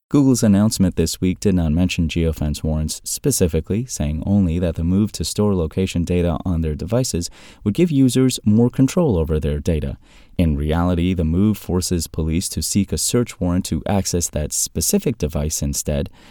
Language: English